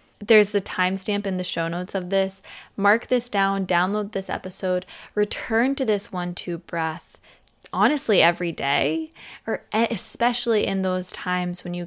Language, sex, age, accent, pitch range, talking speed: English, female, 10-29, American, 175-210 Hz, 150 wpm